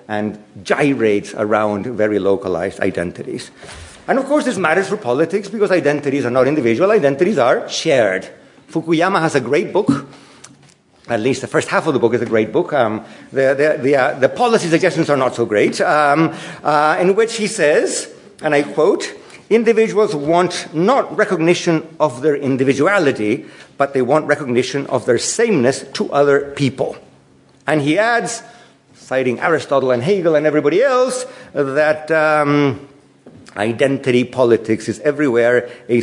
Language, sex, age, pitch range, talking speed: English, male, 50-69, 125-185 Hz, 150 wpm